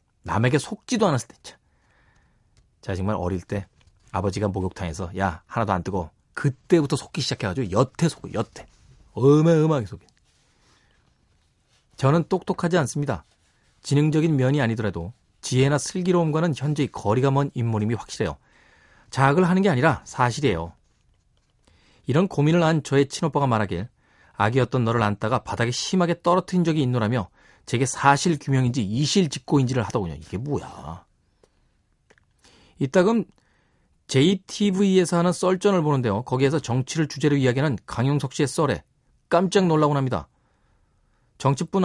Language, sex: Korean, male